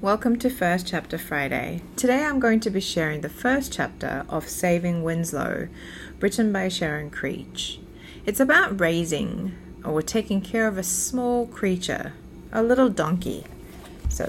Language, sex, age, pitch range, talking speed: English, female, 30-49, 160-205 Hz, 145 wpm